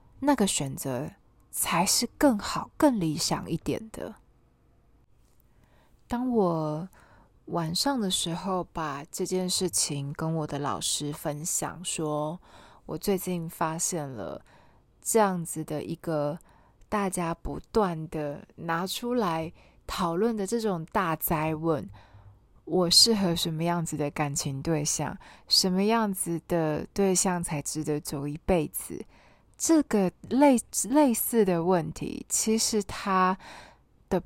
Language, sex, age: Chinese, female, 20-39